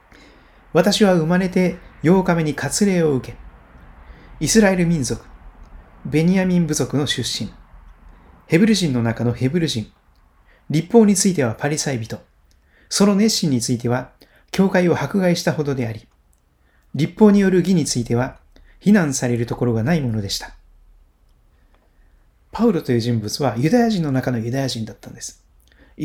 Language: Japanese